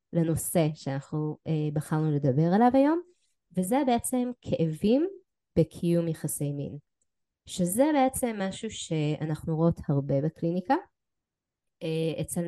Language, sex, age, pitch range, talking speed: Hebrew, female, 20-39, 160-205 Hz, 95 wpm